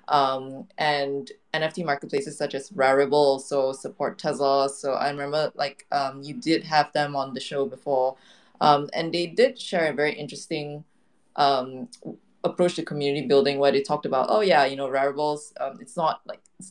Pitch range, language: 140-160 Hz, English